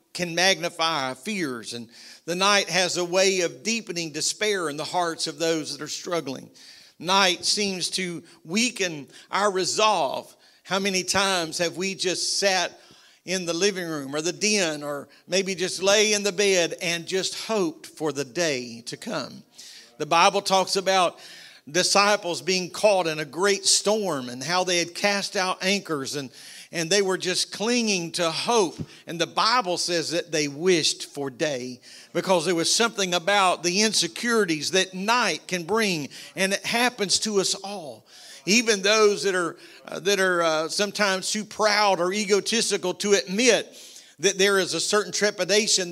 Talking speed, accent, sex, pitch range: 165 wpm, American, male, 170-200 Hz